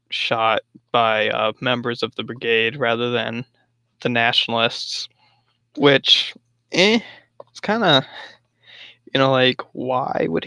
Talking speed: 120 wpm